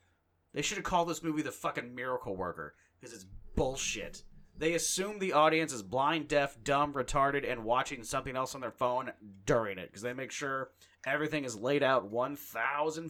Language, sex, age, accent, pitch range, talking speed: English, male, 30-49, American, 115-165 Hz, 185 wpm